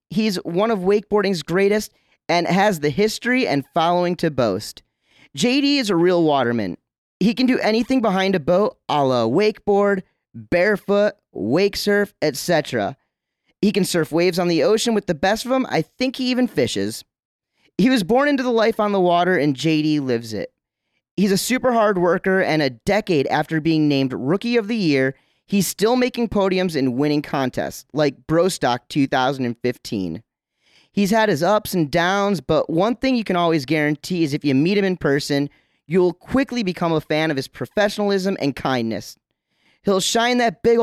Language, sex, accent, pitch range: English, male, American, 145-210 Hz